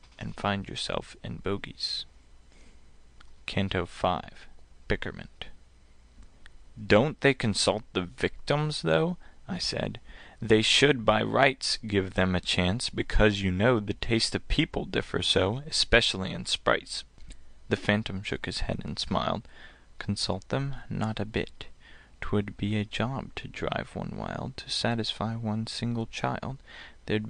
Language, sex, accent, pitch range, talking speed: English, male, American, 90-115 Hz, 135 wpm